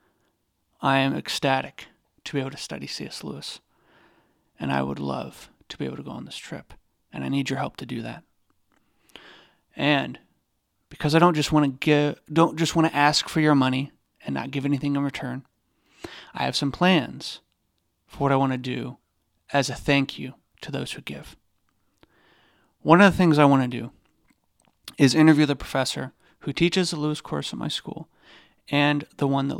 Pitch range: 135-155 Hz